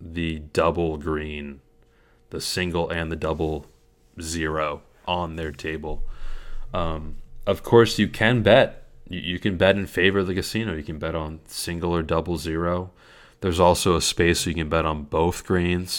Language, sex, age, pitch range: English, male, 20-39, 80-90 Hz